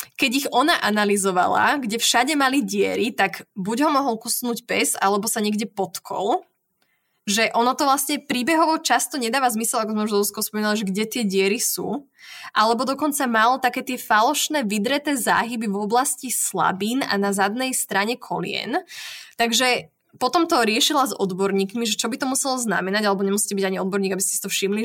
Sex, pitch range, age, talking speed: female, 210-270 Hz, 20-39, 170 wpm